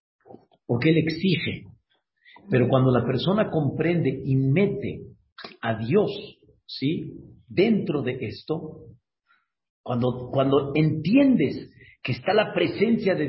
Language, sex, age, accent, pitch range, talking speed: Spanish, male, 50-69, Mexican, 115-150 Hz, 110 wpm